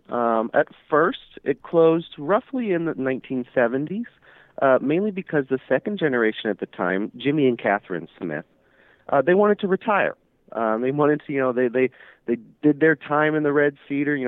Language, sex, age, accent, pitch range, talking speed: English, male, 30-49, American, 105-145 Hz, 180 wpm